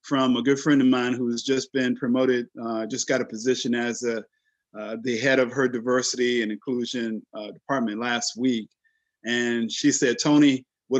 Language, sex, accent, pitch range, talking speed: English, male, American, 125-150 Hz, 190 wpm